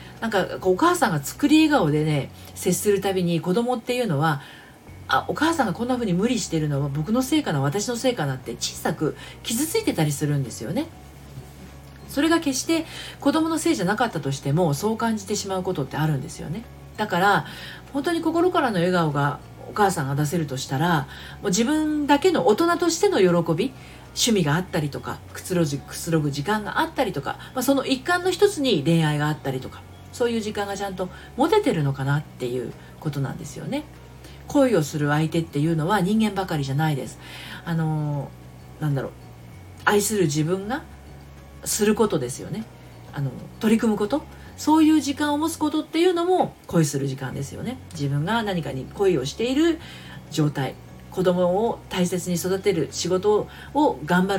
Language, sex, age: Japanese, female, 40-59